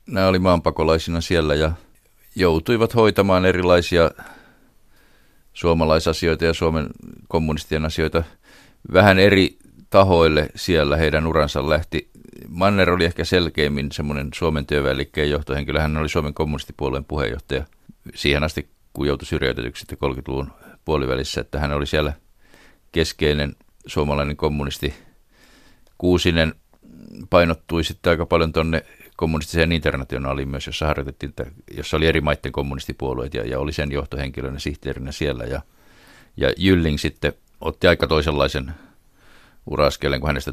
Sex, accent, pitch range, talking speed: male, native, 70-80 Hz, 120 wpm